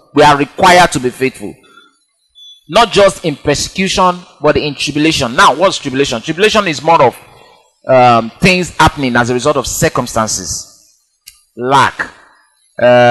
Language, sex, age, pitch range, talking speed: English, male, 30-49, 125-165 Hz, 135 wpm